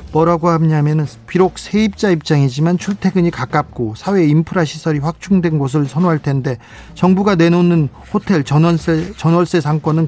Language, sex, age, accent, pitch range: Korean, male, 40-59, native, 145-195 Hz